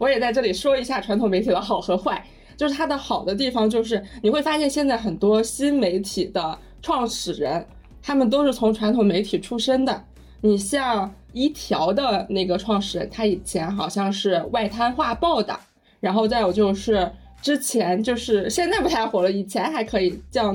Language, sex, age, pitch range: Chinese, female, 20-39, 200-255 Hz